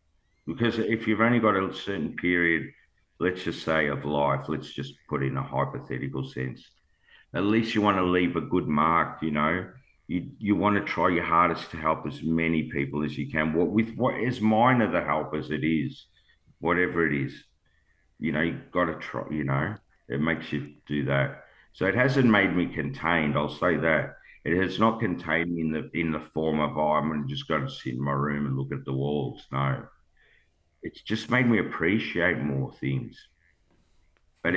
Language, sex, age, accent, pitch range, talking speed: English, male, 50-69, Australian, 70-85 Hz, 200 wpm